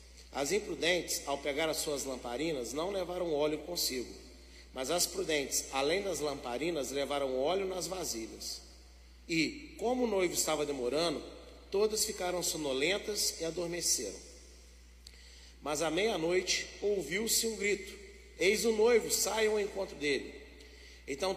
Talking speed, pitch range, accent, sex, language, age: 130 wpm, 140-195 Hz, Brazilian, male, Portuguese, 40-59